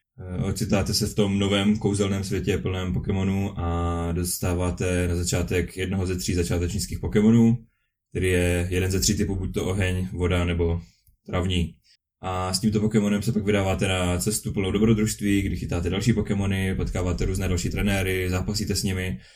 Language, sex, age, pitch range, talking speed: Czech, male, 20-39, 90-105 Hz, 160 wpm